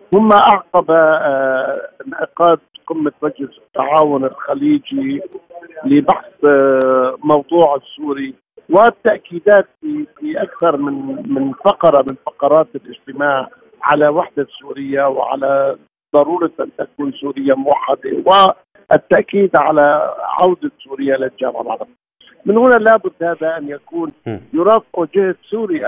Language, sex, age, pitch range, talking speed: Arabic, male, 50-69, 140-200 Hz, 95 wpm